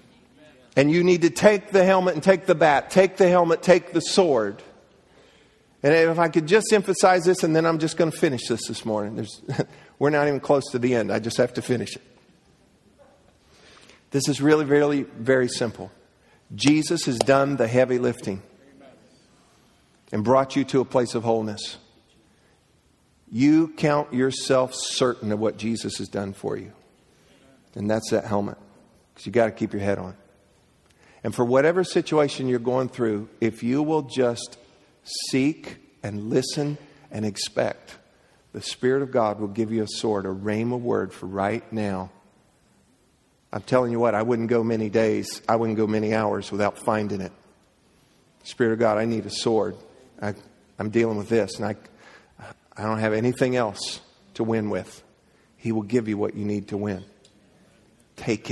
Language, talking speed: English, 175 wpm